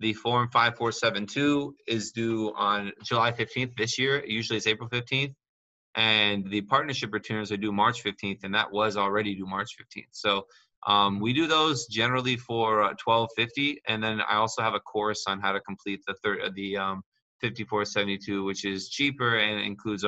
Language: English